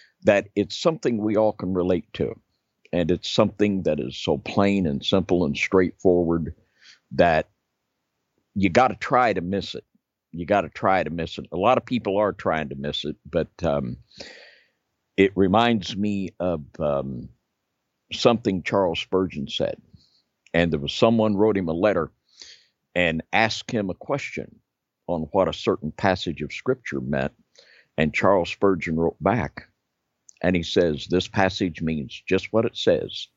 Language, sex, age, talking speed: English, male, 50-69, 160 wpm